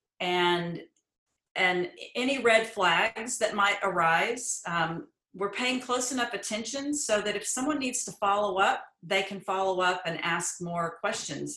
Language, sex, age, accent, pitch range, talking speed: English, female, 40-59, American, 175-210 Hz, 155 wpm